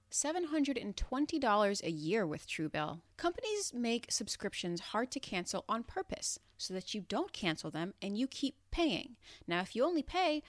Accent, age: American, 30-49